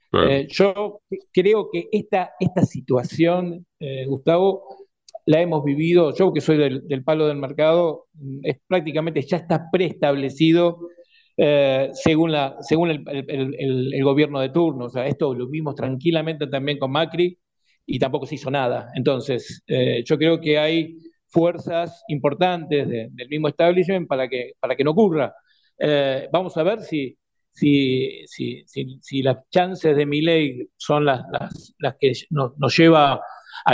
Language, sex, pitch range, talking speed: Spanish, male, 140-175 Hz, 160 wpm